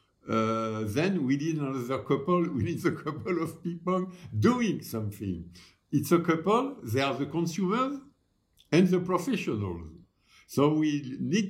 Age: 60-79